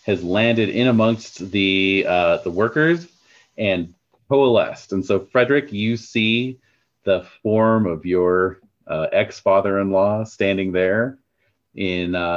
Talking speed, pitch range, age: 130 wpm, 85-105 Hz, 30-49